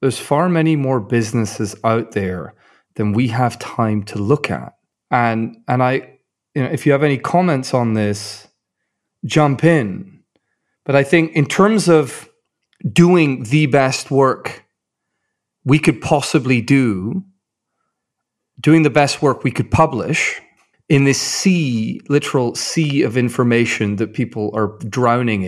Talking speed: 140 wpm